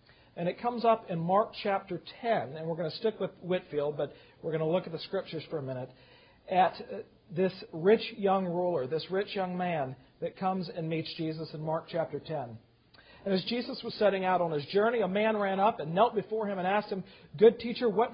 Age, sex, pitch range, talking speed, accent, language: 50-69, male, 160-210 Hz, 220 wpm, American, English